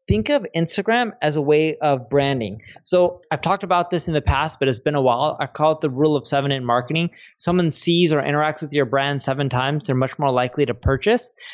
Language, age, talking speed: English, 20-39, 235 wpm